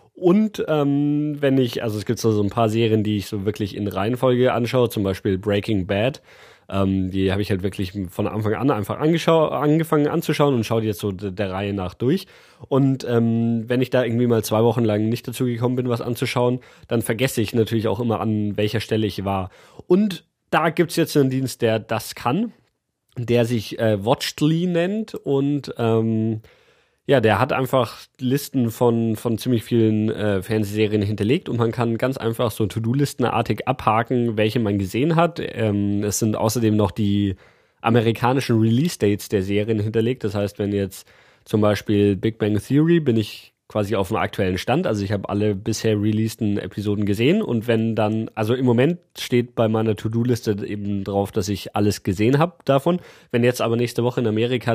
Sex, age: male, 30-49